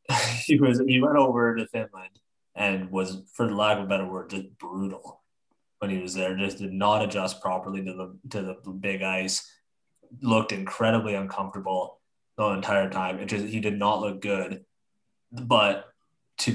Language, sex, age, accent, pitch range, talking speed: English, male, 20-39, American, 95-115 Hz, 175 wpm